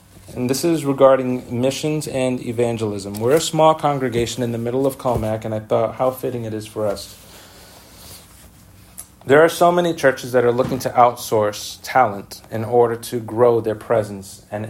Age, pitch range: 40-59, 110-135 Hz